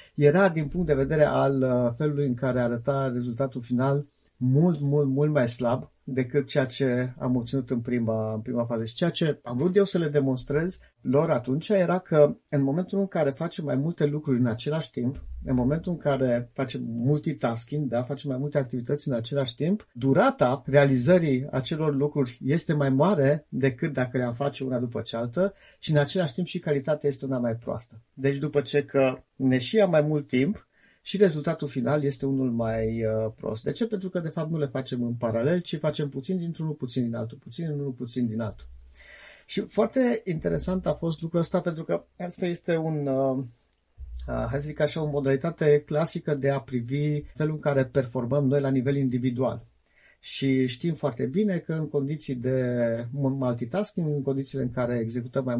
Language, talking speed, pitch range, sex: Romanian, 190 wpm, 125-155 Hz, male